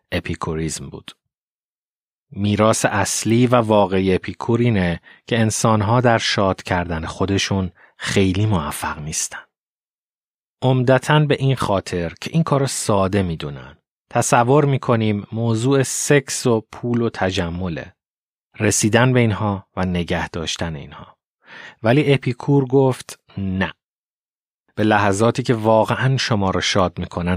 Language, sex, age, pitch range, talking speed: Persian, male, 30-49, 90-120 Hz, 115 wpm